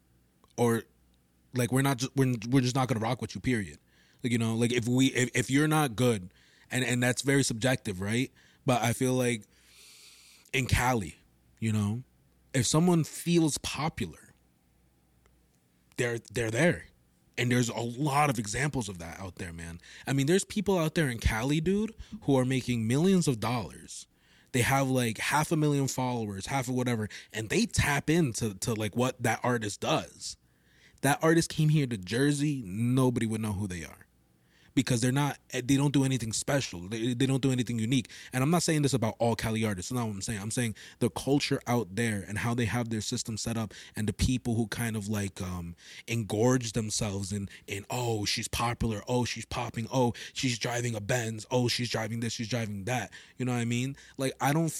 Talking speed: 200 wpm